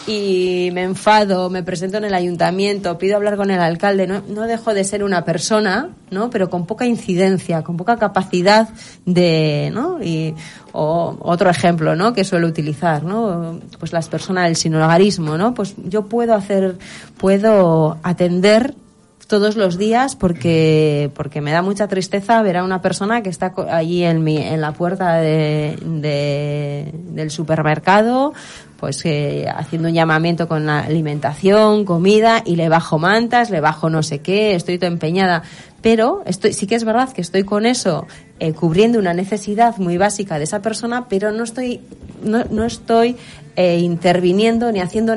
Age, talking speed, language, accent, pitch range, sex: 30-49, 170 wpm, Spanish, Spanish, 165-215 Hz, female